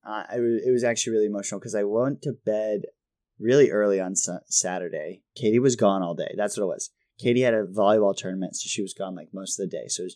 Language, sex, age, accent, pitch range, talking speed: English, male, 20-39, American, 95-115 Hz, 240 wpm